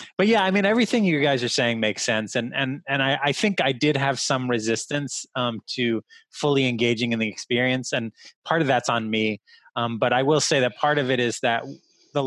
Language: English